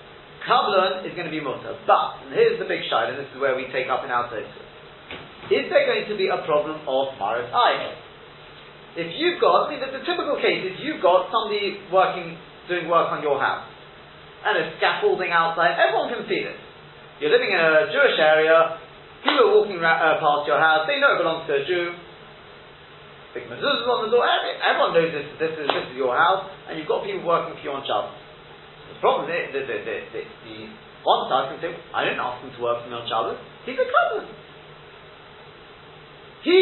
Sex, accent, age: male, British, 30-49